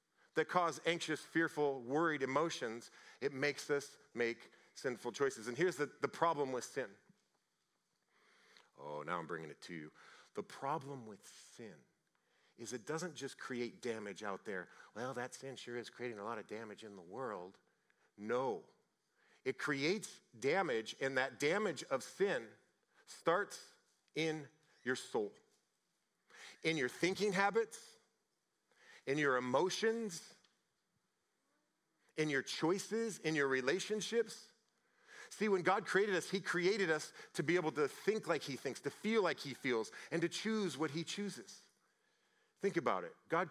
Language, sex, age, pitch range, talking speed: English, male, 40-59, 135-205 Hz, 150 wpm